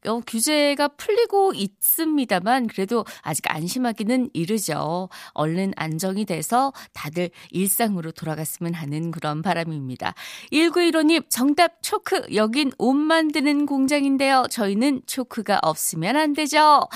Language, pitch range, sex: Korean, 185-290 Hz, female